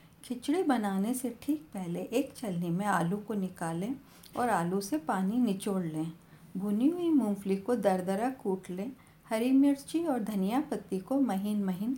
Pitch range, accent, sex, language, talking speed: 185-250 Hz, native, female, Hindi, 160 wpm